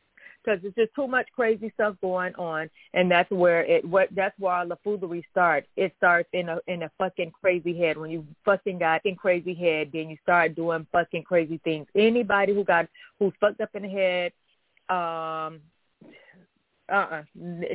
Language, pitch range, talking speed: English, 165-210 Hz, 175 wpm